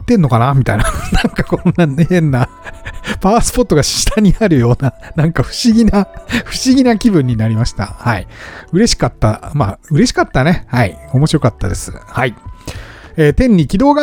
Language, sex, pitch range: Japanese, male, 120-195 Hz